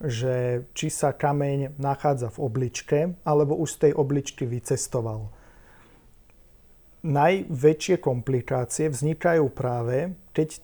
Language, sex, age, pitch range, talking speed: Slovak, male, 40-59, 130-155 Hz, 100 wpm